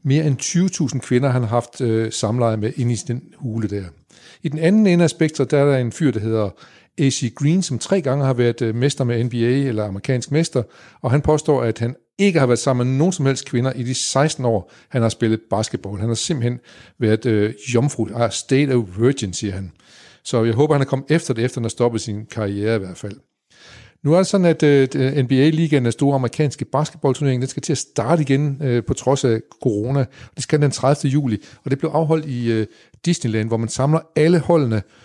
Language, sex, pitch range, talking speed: Danish, male, 115-145 Hz, 220 wpm